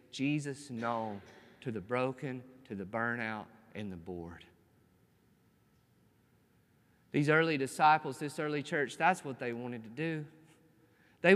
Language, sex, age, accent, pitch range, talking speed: English, male, 40-59, American, 160-215 Hz, 125 wpm